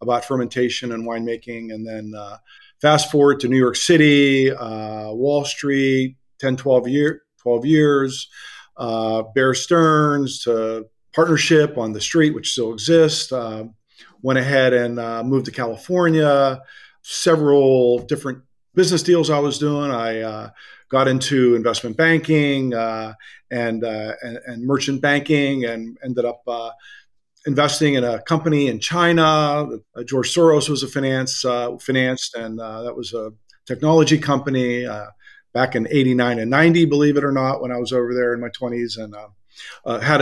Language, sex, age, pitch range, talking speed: English, male, 50-69, 120-150 Hz, 160 wpm